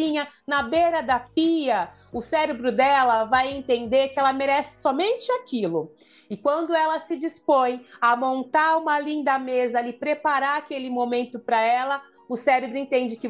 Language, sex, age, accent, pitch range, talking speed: Portuguese, female, 30-49, Brazilian, 255-320 Hz, 155 wpm